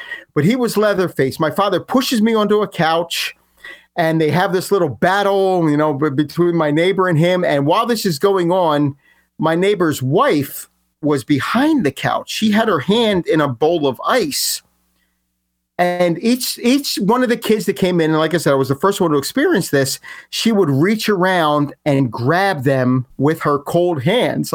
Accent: American